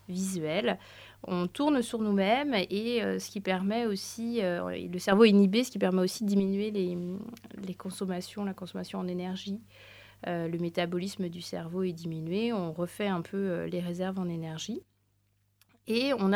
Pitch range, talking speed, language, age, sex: 180-215 Hz, 170 wpm, French, 30-49, female